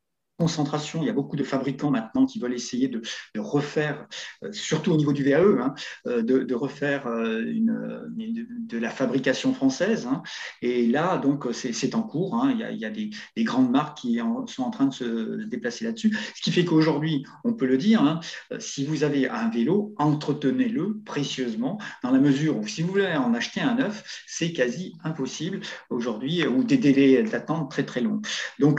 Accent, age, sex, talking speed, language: French, 50-69, male, 200 wpm, French